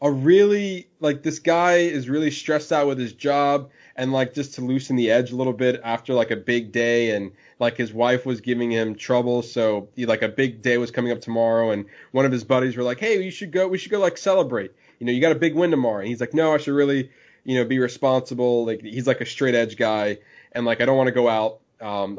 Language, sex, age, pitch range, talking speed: English, male, 20-39, 115-140 Hz, 255 wpm